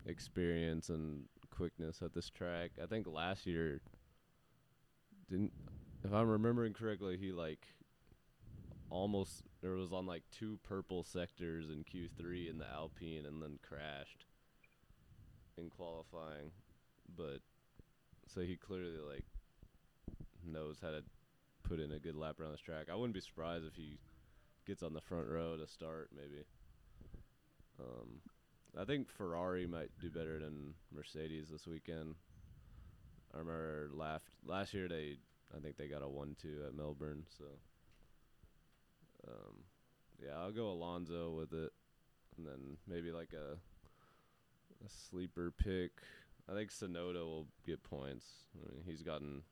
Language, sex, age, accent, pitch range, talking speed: English, male, 20-39, American, 75-90 Hz, 145 wpm